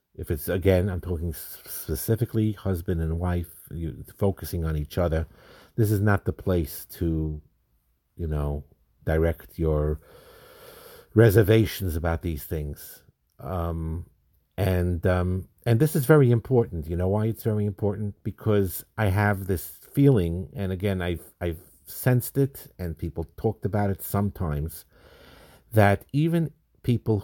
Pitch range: 80-105 Hz